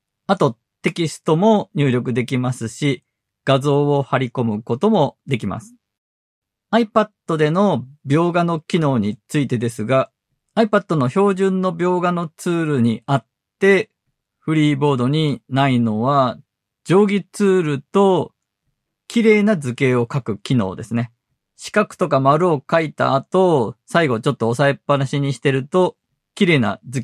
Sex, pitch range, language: male, 125-170 Hz, Japanese